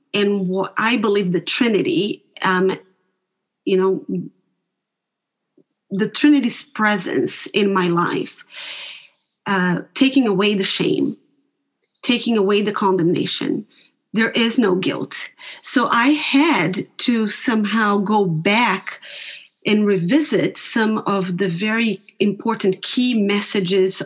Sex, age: female, 30-49